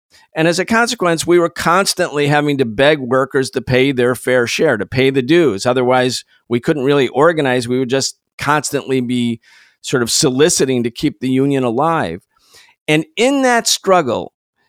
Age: 50-69